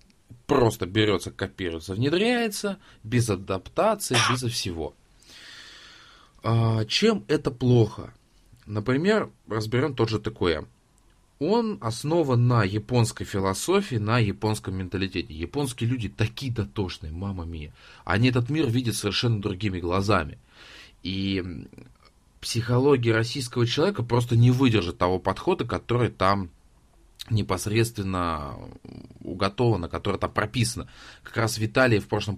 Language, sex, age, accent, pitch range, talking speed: Russian, male, 20-39, native, 95-120 Hz, 105 wpm